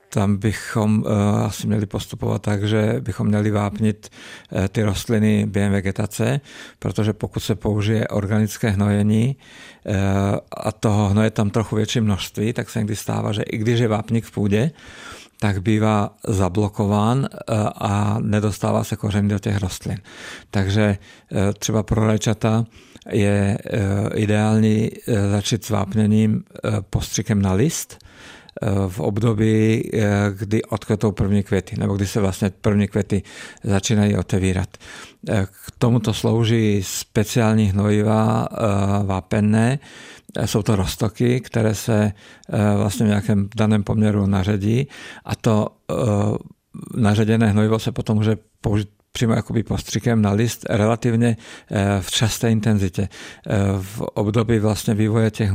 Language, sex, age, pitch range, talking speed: Czech, male, 50-69, 100-110 Hz, 120 wpm